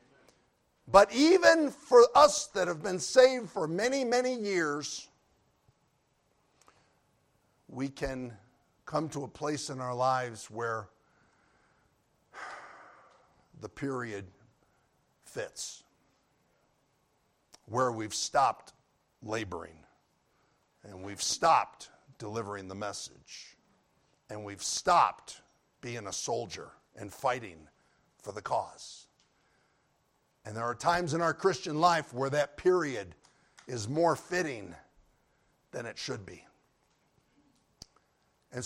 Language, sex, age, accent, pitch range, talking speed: English, male, 60-79, American, 125-210 Hz, 100 wpm